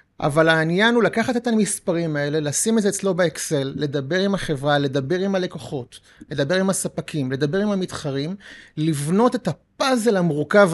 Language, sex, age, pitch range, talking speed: Hebrew, male, 30-49, 150-200 Hz, 155 wpm